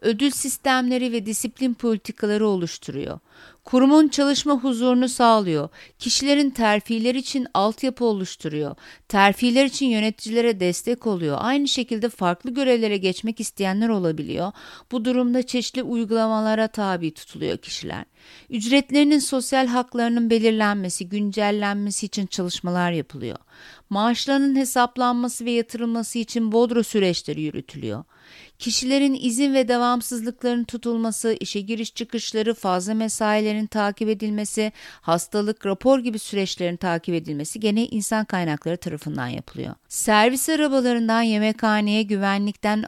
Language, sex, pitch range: Turkish, female, 200-250 Hz